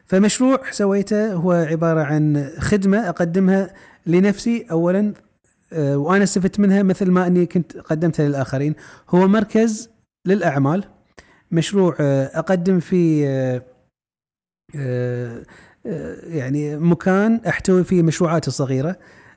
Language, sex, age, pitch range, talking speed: English, male, 30-49, 145-195 Hz, 95 wpm